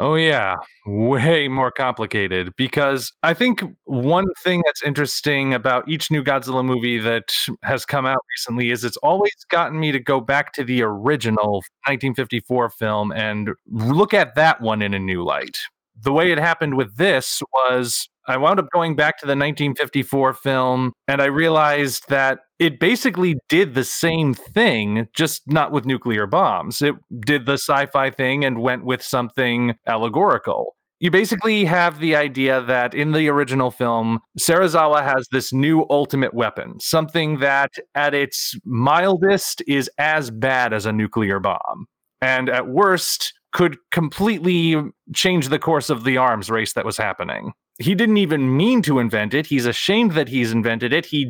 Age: 30-49